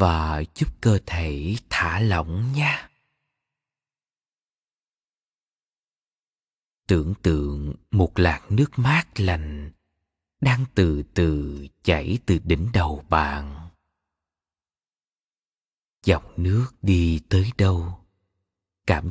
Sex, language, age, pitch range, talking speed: male, Vietnamese, 20-39, 80-125 Hz, 90 wpm